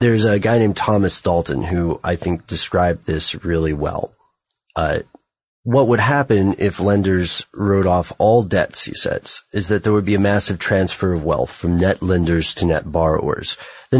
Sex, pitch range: male, 85-105 Hz